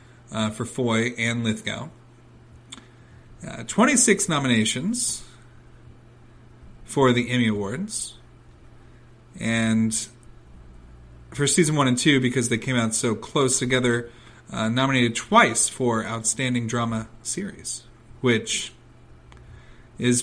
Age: 40-59